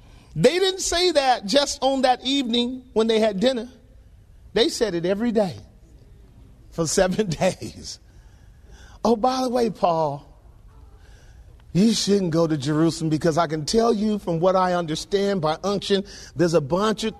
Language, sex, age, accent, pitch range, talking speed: English, male, 40-59, American, 160-245 Hz, 155 wpm